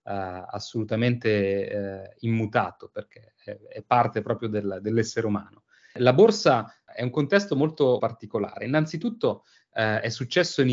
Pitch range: 110-165 Hz